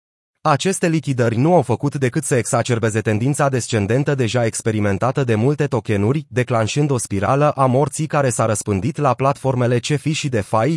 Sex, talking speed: male, 155 wpm